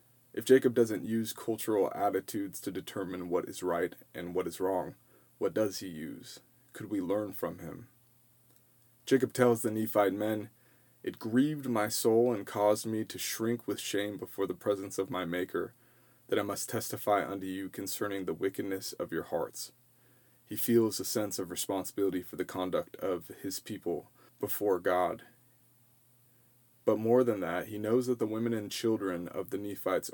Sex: male